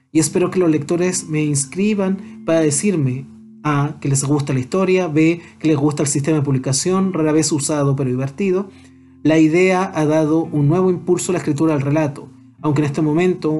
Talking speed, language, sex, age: 195 wpm, Spanish, male, 30-49